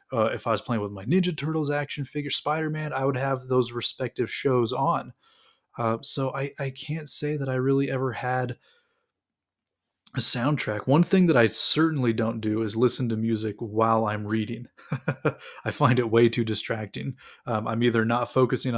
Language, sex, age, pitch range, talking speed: English, male, 20-39, 115-140 Hz, 180 wpm